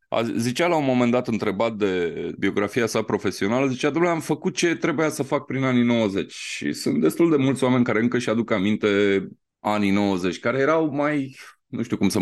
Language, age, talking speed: Romanian, 20-39, 205 wpm